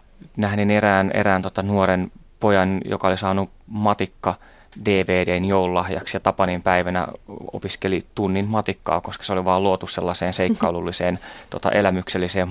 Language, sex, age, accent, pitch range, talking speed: Finnish, male, 20-39, native, 90-110 Hz, 125 wpm